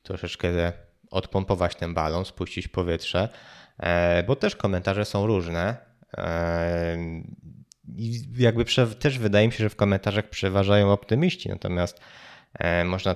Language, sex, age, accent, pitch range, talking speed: Polish, male, 20-39, native, 85-100 Hz, 110 wpm